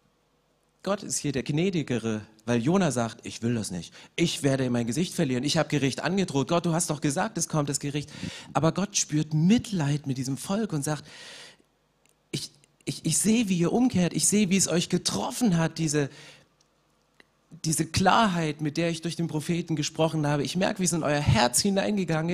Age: 40-59